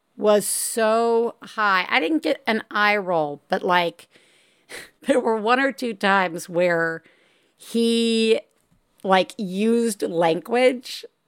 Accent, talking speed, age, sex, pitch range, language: American, 115 wpm, 50-69, female, 205-290 Hz, English